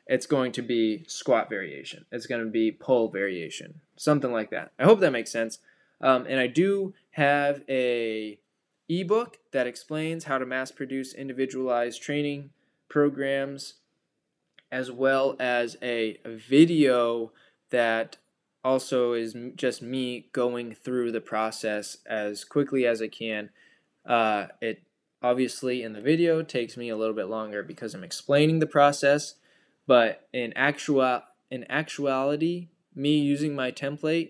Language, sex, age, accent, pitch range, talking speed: English, male, 20-39, American, 115-145 Hz, 140 wpm